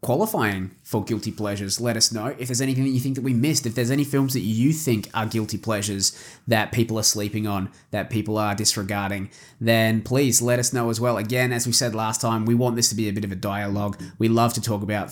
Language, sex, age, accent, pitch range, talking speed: English, male, 20-39, Australian, 105-135 Hz, 250 wpm